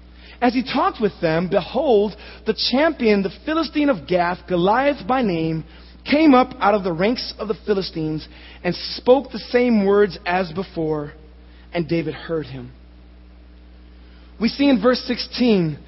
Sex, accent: male, American